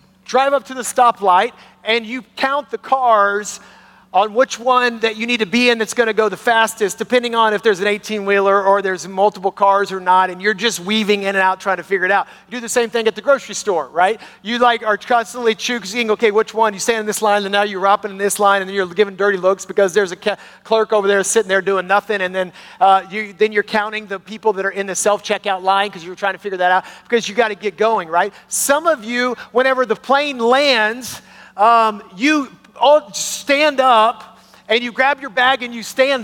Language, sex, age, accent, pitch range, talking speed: English, male, 40-59, American, 195-240 Hz, 245 wpm